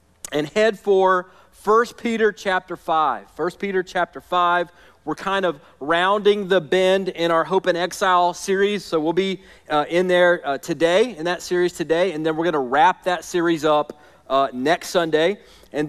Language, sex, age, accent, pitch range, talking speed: English, male, 40-59, American, 155-195 Hz, 180 wpm